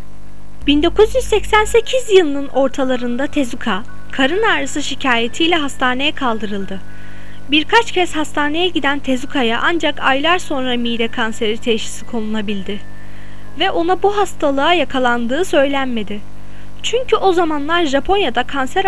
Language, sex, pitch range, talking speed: Turkish, female, 225-310 Hz, 100 wpm